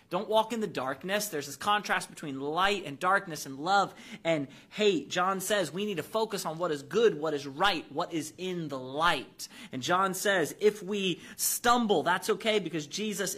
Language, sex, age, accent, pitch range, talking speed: English, male, 30-49, American, 140-195 Hz, 195 wpm